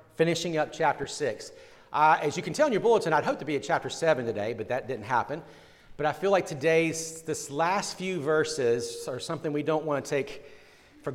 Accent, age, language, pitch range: American, 40-59, English, 130-155 Hz